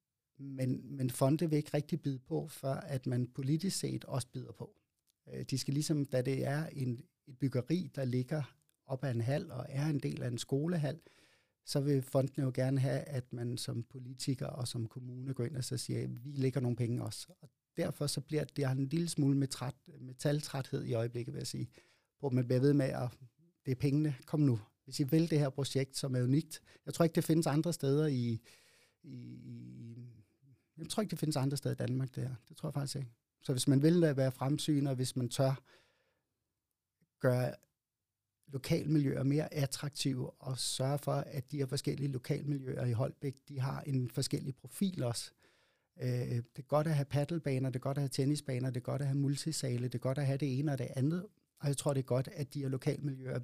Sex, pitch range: male, 130-150 Hz